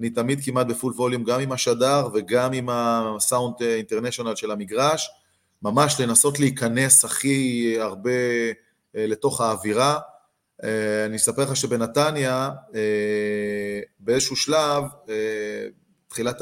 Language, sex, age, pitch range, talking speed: Hebrew, male, 30-49, 110-135 Hz, 115 wpm